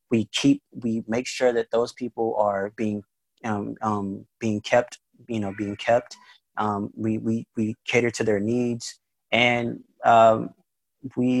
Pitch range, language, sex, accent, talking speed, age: 100-120 Hz, English, male, American, 155 wpm, 20-39